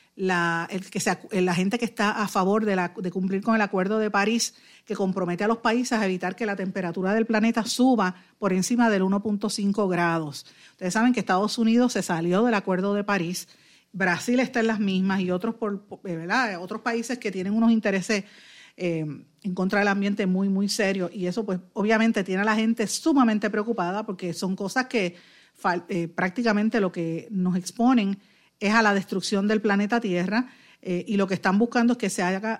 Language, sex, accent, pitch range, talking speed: Spanish, female, American, 185-225 Hz, 195 wpm